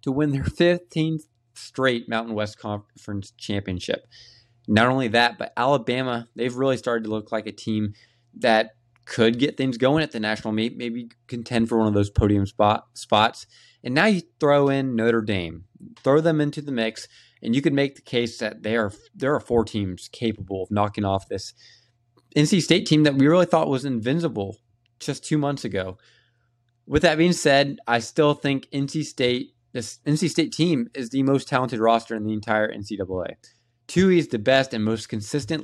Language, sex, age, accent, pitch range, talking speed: English, male, 20-39, American, 110-140 Hz, 190 wpm